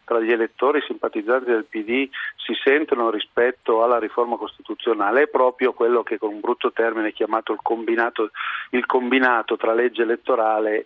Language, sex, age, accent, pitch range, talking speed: Italian, male, 40-59, native, 115-150 Hz, 160 wpm